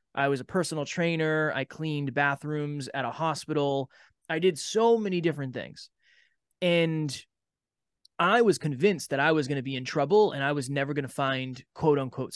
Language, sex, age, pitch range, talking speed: English, male, 20-39, 135-170 Hz, 185 wpm